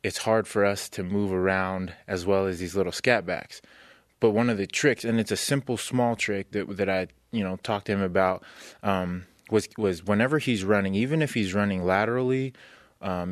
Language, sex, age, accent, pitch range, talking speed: English, male, 20-39, American, 95-115 Hz, 205 wpm